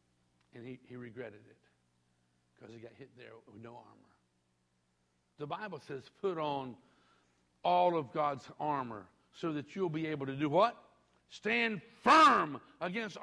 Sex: male